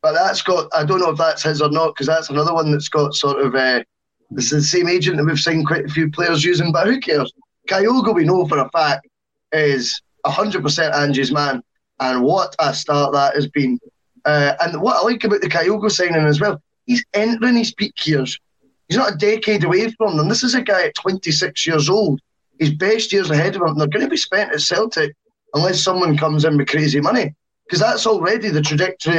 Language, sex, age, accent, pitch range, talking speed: English, male, 10-29, British, 150-210 Hz, 220 wpm